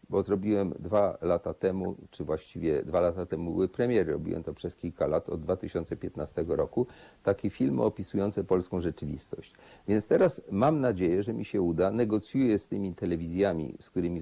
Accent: native